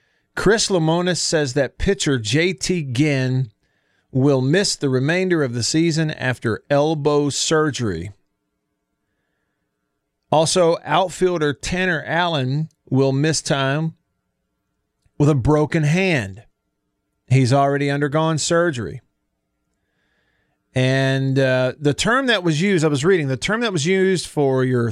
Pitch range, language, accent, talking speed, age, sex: 130-160 Hz, English, American, 120 wpm, 40-59, male